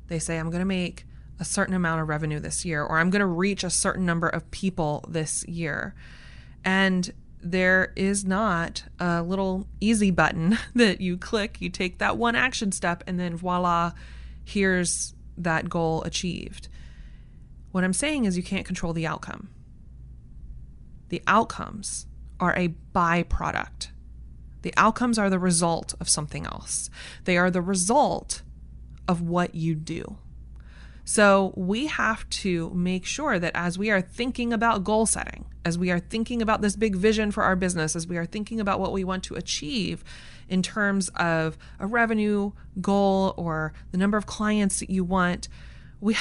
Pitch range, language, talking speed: 160-195 Hz, English, 170 wpm